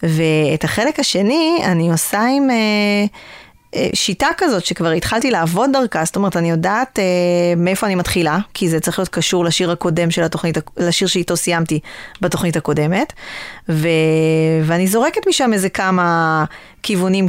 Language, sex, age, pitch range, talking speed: Hebrew, female, 20-39, 165-200 Hz, 150 wpm